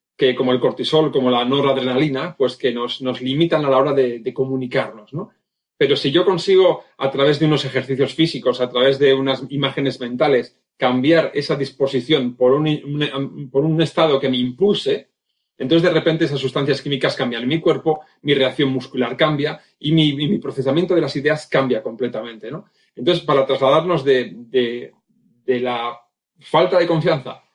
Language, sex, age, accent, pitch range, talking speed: Spanish, male, 40-59, Spanish, 130-155 Hz, 180 wpm